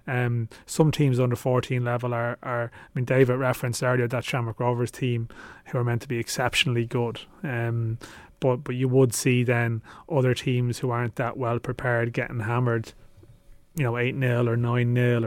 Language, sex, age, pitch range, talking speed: English, male, 30-49, 115-130 Hz, 175 wpm